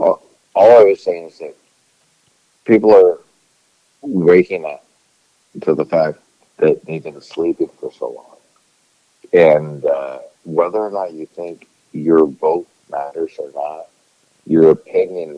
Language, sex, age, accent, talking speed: English, male, 50-69, American, 135 wpm